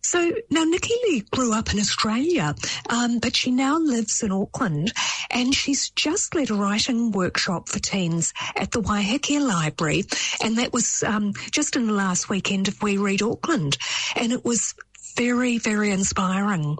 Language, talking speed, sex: English, 170 wpm, female